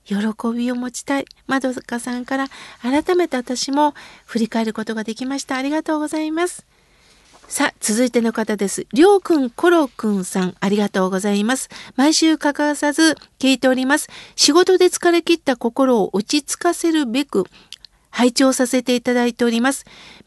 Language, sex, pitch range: Japanese, female, 230-320 Hz